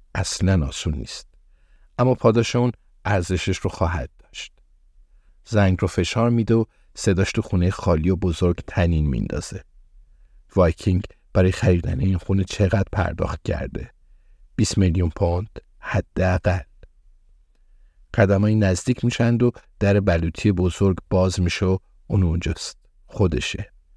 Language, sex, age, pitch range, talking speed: Persian, male, 50-69, 80-100 Hz, 115 wpm